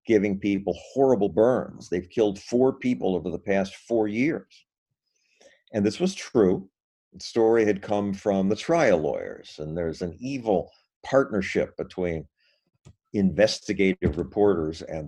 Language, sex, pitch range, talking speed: English, male, 90-115 Hz, 135 wpm